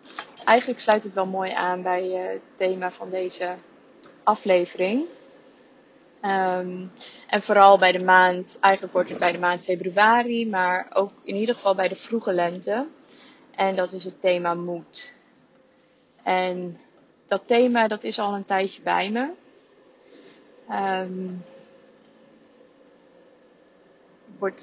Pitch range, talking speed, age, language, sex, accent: 185-240 Hz, 120 wpm, 20-39, Dutch, female, Dutch